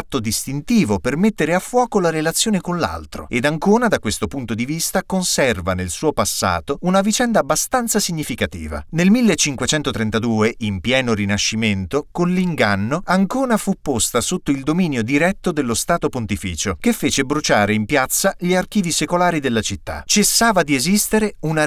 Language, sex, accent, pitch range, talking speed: Italian, male, native, 110-185 Hz, 150 wpm